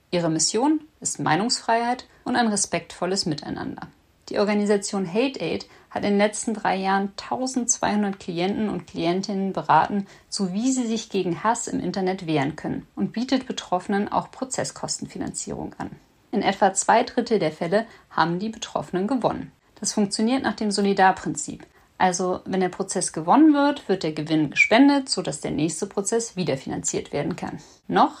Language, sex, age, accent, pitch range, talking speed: German, female, 50-69, German, 180-225 Hz, 155 wpm